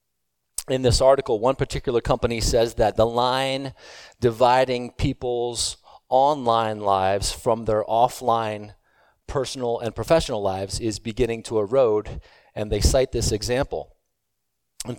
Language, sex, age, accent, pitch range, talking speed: English, male, 40-59, American, 105-130 Hz, 125 wpm